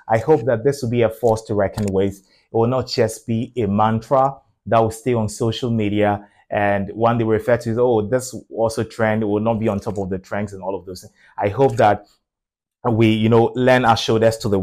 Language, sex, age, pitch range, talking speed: English, male, 30-49, 105-125 Hz, 240 wpm